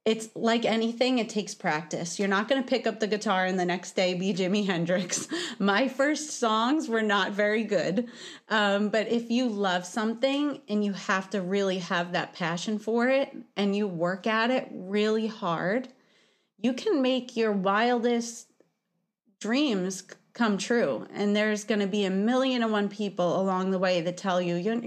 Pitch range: 190-240 Hz